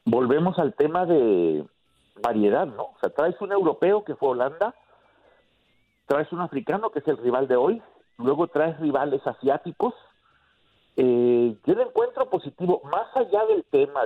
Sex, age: male, 50-69